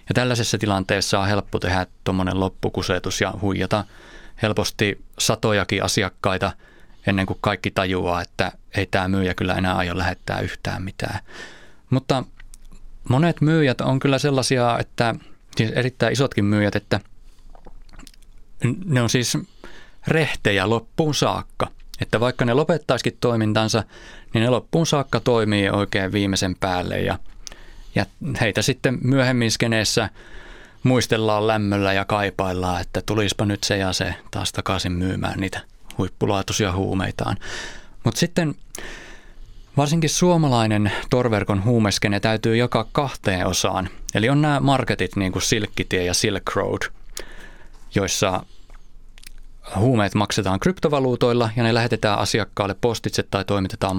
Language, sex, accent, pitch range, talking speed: Finnish, male, native, 95-120 Hz, 120 wpm